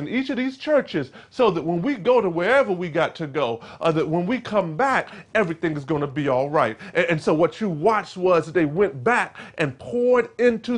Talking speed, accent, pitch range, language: 240 wpm, American, 165-230 Hz, English